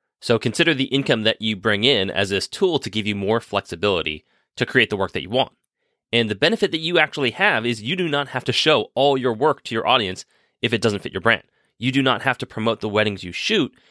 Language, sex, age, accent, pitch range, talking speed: English, male, 30-49, American, 105-135 Hz, 255 wpm